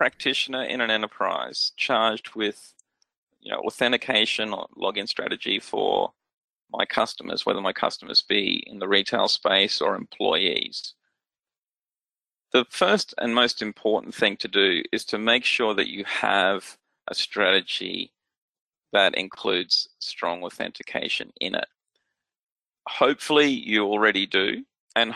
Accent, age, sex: Australian, 40-59, male